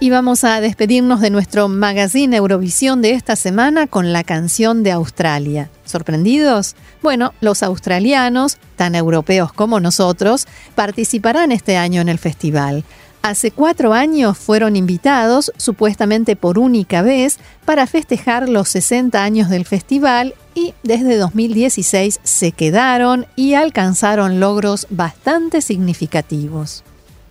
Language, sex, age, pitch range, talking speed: Spanish, female, 40-59, 180-245 Hz, 125 wpm